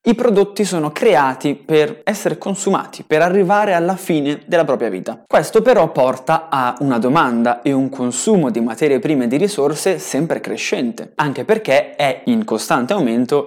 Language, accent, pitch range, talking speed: Italian, native, 130-215 Hz, 165 wpm